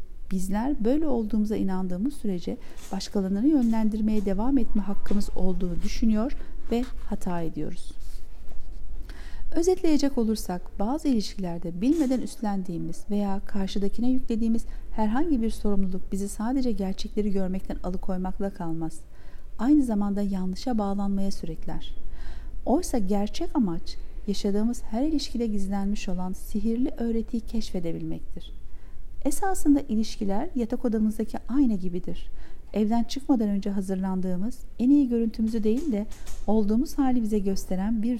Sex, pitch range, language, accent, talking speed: female, 185-240 Hz, Turkish, native, 110 wpm